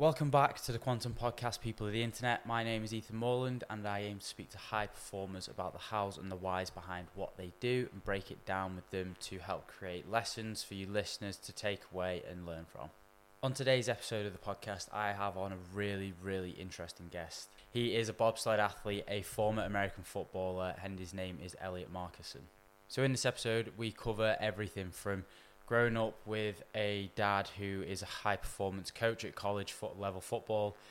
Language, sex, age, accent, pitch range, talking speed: English, male, 10-29, British, 95-110 Hz, 205 wpm